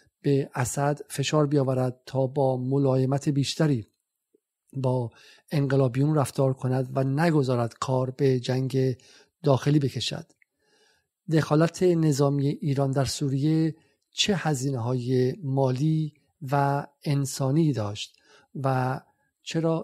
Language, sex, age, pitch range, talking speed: Persian, male, 50-69, 135-155 Hz, 100 wpm